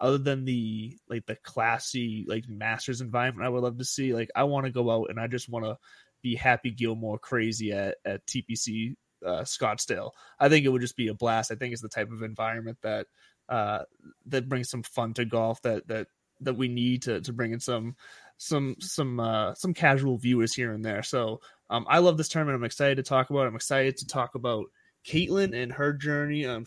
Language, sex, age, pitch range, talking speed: English, male, 20-39, 115-140 Hz, 220 wpm